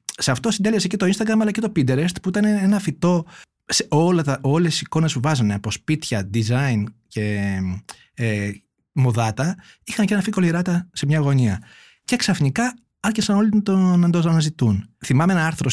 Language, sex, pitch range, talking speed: Greek, male, 115-165 Hz, 180 wpm